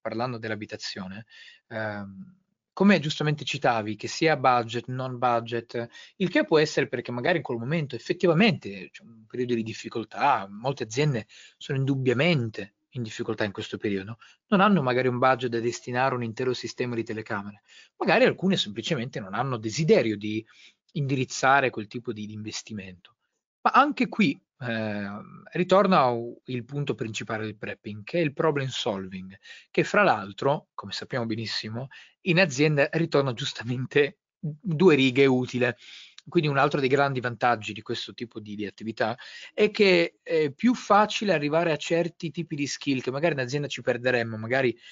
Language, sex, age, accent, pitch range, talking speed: Italian, male, 30-49, native, 115-155 Hz, 155 wpm